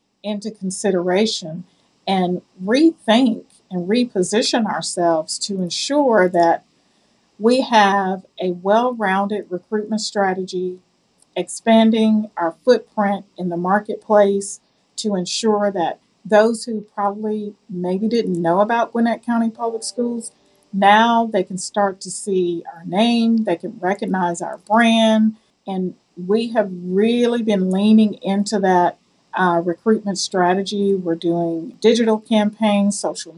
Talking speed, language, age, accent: 115 wpm, English, 40-59, American